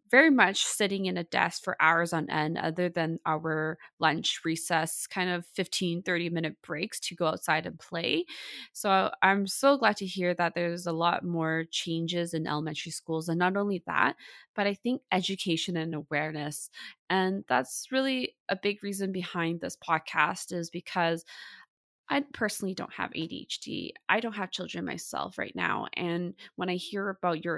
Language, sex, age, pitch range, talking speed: English, female, 20-39, 165-195 Hz, 175 wpm